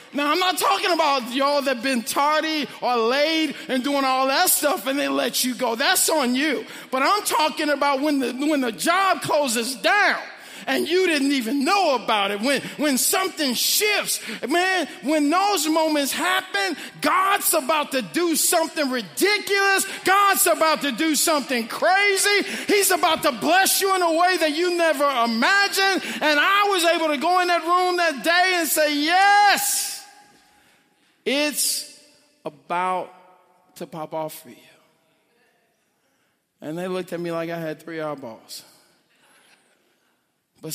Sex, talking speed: male, 160 wpm